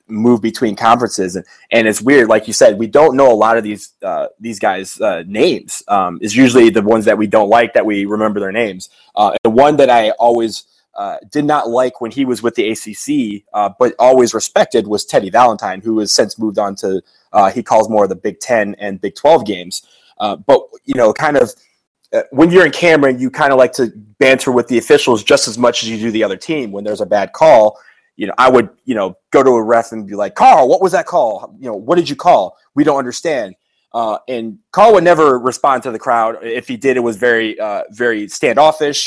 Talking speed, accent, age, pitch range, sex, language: 240 wpm, American, 20-39, 110-145 Hz, male, English